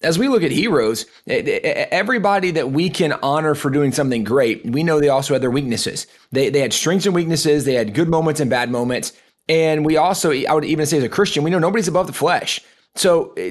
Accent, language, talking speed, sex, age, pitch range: American, English, 225 wpm, male, 30-49, 135-165 Hz